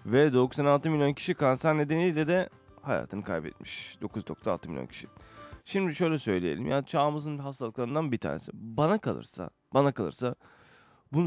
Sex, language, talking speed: male, Turkish, 135 wpm